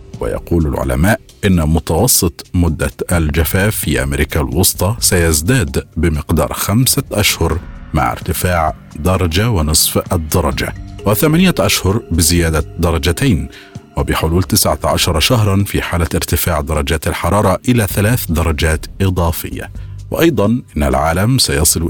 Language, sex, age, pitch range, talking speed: Arabic, male, 50-69, 80-100 Hz, 105 wpm